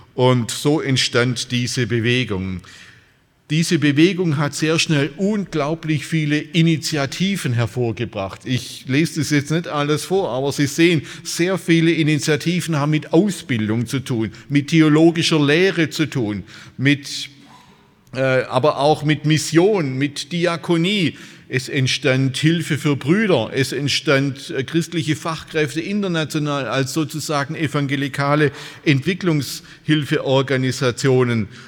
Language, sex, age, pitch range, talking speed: German, male, 50-69, 130-160 Hz, 110 wpm